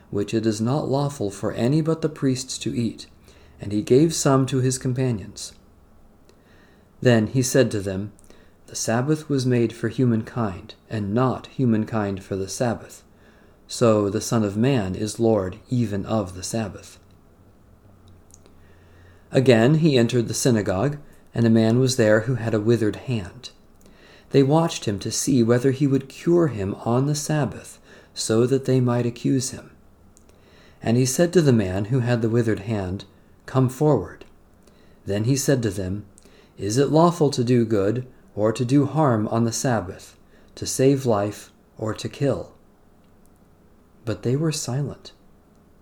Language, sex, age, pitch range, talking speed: English, male, 40-59, 100-130 Hz, 160 wpm